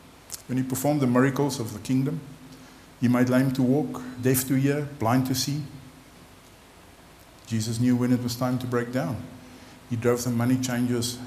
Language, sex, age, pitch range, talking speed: English, male, 50-69, 115-130 Hz, 175 wpm